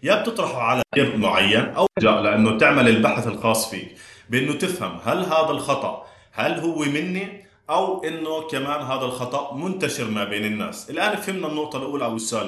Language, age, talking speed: Arabic, 30-49, 165 wpm